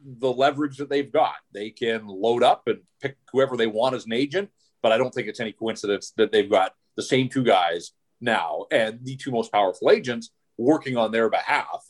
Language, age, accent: English, 40-59, American